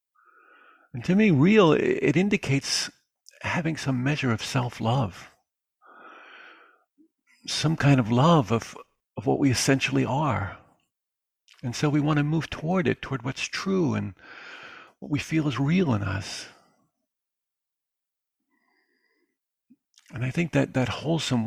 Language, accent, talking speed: English, American, 130 wpm